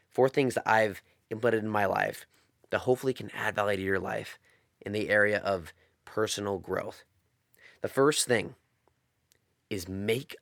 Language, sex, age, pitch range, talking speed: English, male, 30-49, 100-125 Hz, 155 wpm